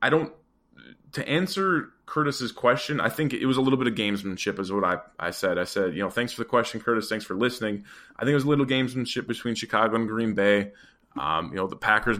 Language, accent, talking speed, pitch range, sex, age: English, American, 240 wpm, 100-120 Hz, male, 20-39